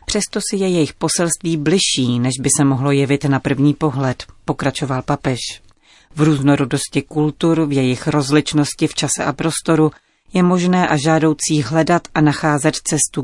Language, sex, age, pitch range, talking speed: Czech, female, 30-49, 135-160 Hz, 155 wpm